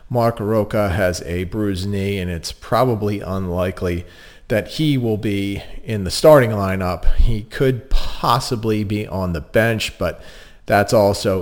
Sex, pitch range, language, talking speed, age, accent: male, 90-110 Hz, English, 145 wpm, 40-59, American